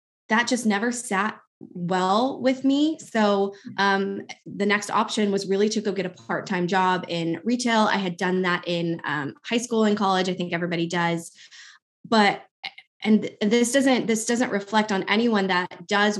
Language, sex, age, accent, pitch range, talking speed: English, female, 20-39, American, 180-220 Hz, 175 wpm